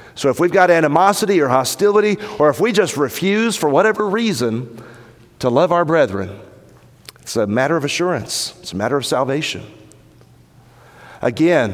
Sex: male